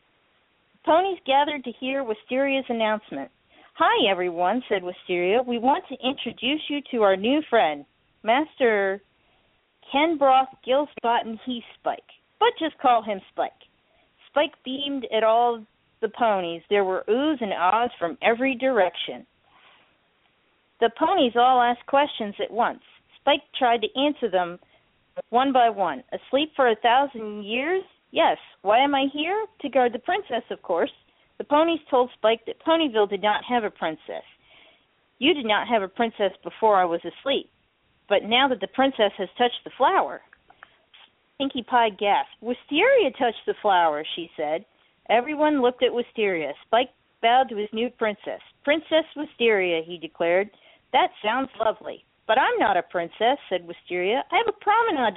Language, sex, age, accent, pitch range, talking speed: English, female, 40-59, American, 210-280 Hz, 155 wpm